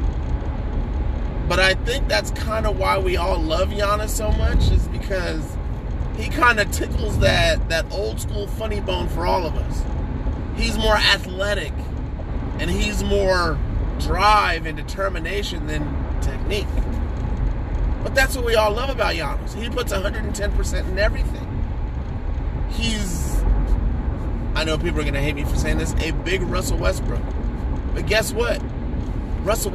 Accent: American